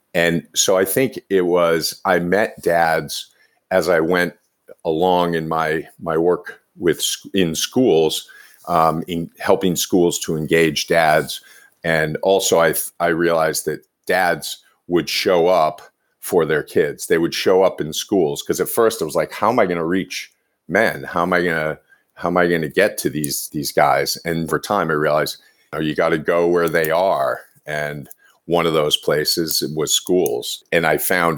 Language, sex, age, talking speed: English, male, 50-69, 185 wpm